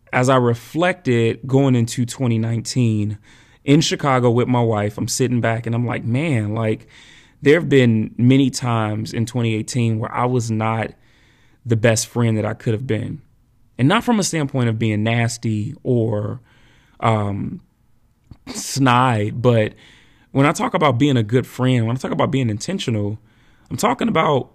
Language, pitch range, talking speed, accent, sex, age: English, 115-135 Hz, 165 wpm, American, male, 30-49